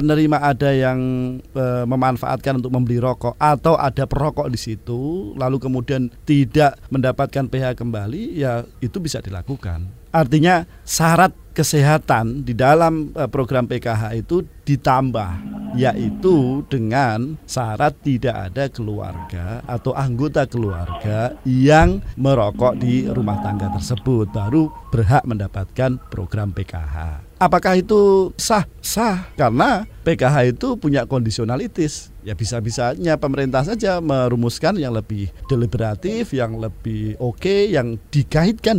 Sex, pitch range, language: male, 115-145 Hz, Indonesian